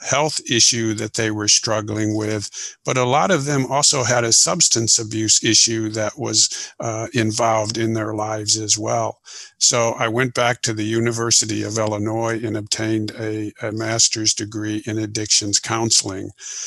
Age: 50-69